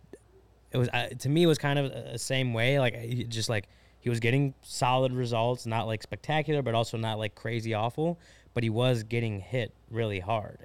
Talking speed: 205 wpm